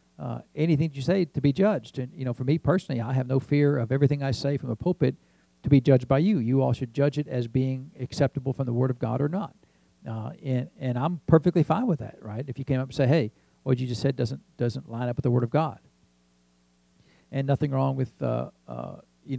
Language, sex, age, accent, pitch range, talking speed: English, male, 50-69, American, 120-150 Hz, 250 wpm